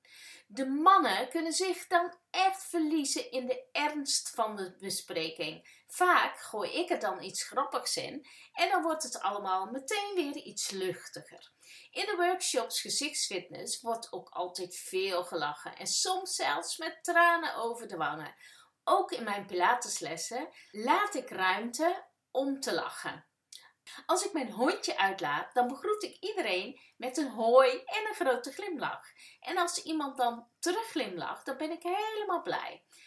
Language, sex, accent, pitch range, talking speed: English, female, Dutch, 230-360 Hz, 150 wpm